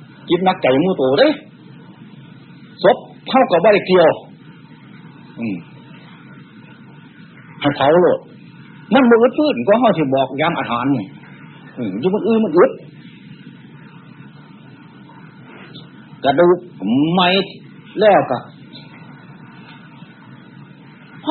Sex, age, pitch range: male, 60-79, 145-225 Hz